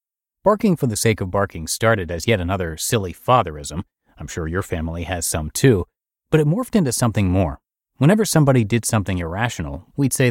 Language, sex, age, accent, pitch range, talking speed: English, male, 30-49, American, 95-130 Hz, 185 wpm